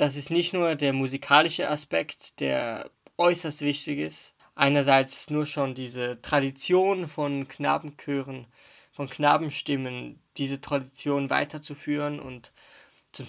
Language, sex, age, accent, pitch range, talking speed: German, male, 20-39, German, 135-150 Hz, 115 wpm